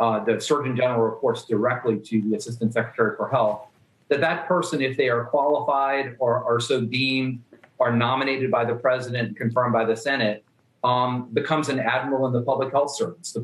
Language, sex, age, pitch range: English, male, 40-59, 115-130 Hz